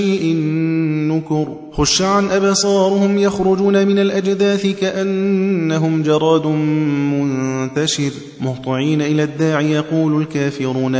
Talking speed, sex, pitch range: 85 wpm, male, 140-155 Hz